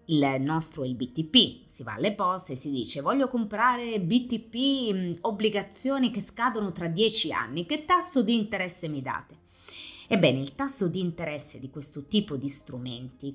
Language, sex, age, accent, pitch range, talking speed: Italian, female, 30-49, native, 135-205 Hz, 160 wpm